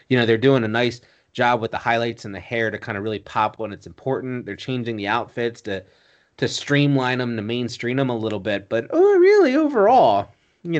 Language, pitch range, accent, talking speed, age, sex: English, 105-140 Hz, American, 220 wpm, 30-49, male